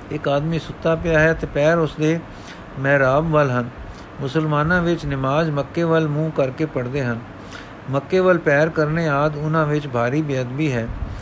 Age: 50-69